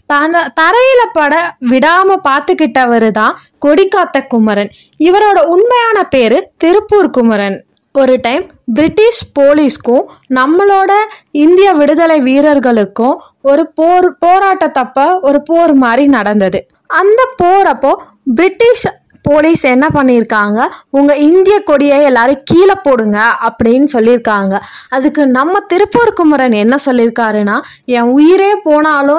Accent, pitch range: native, 255-350 Hz